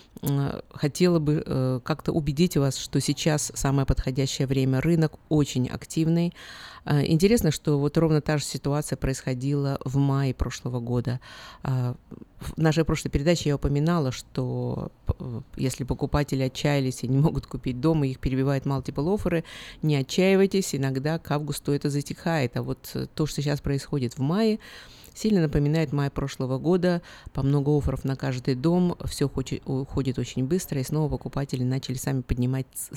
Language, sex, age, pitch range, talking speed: Russian, female, 50-69, 135-160 Hz, 145 wpm